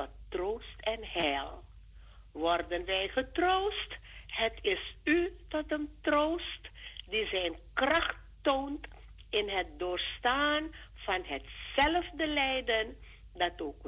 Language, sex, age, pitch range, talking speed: Dutch, female, 50-69, 220-320 Hz, 105 wpm